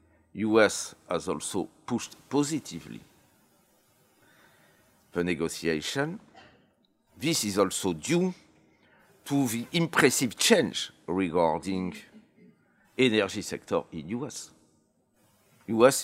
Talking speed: 80 wpm